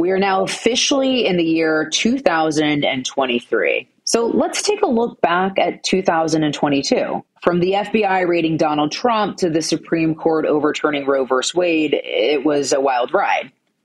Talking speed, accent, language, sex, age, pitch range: 150 wpm, American, English, female, 30-49, 145-195 Hz